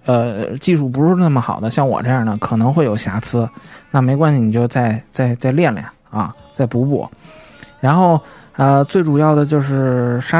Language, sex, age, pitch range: Chinese, male, 20-39, 125-160 Hz